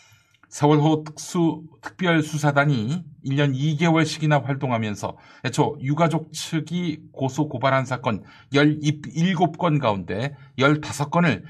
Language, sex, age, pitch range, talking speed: English, male, 50-69, 130-160 Hz, 80 wpm